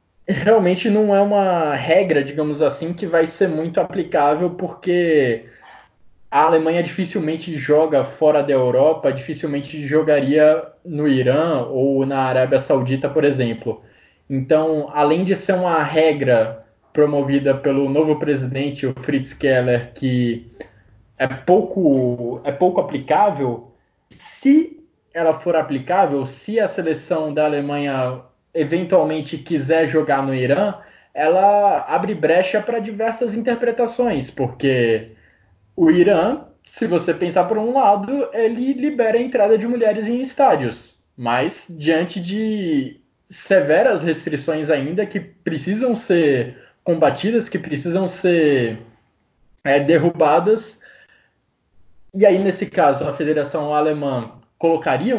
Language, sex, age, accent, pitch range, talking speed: Portuguese, male, 20-39, Brazilian, 135-195 Hz, 115 wpm